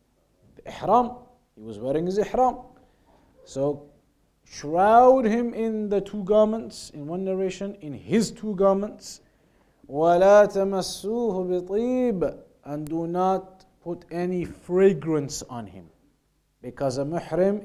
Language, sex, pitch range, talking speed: English, male, 150-200 Hz, 105 wpm